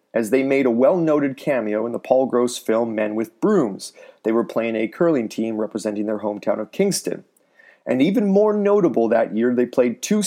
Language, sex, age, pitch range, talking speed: English, male, 30-49, 115-160 Hz, 200 wpm